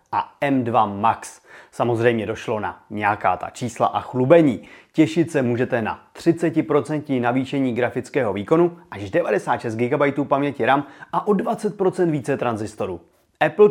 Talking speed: 130 wpm